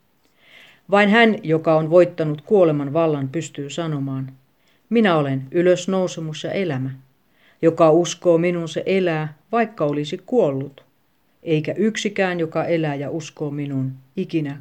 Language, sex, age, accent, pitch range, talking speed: Swedish, female, 40-59, Finnish, 145-180 Hz, 125 wpm